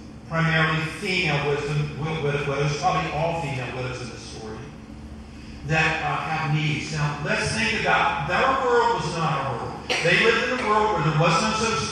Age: 50-69